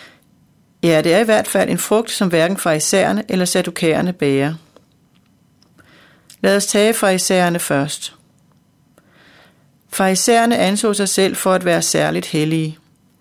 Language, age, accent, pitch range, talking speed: Danish, 40-59, native, 170-205 Hz, 125 wpm